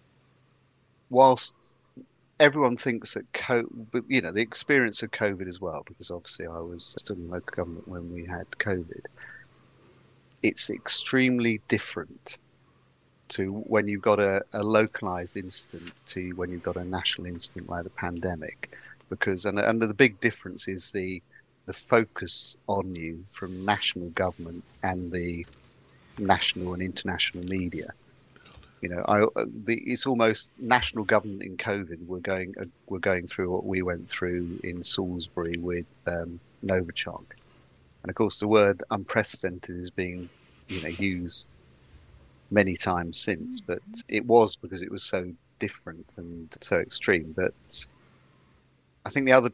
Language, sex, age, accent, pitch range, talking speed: English, male, 40-59, British, 85-105 Hz, 150 wpm